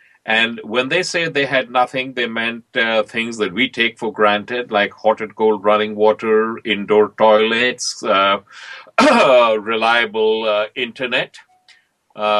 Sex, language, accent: male, English, Indian